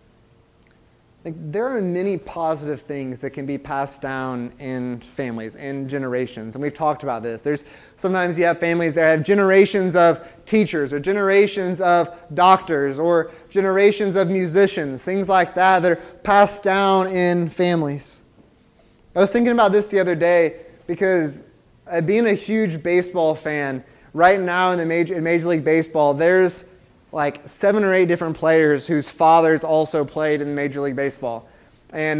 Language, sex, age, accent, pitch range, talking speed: English, male, 20-39, American, 150-190 Hz, 160 wpm